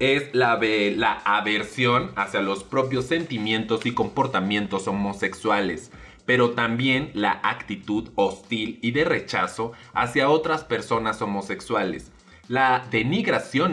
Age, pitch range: 30-49, 105-130 Hz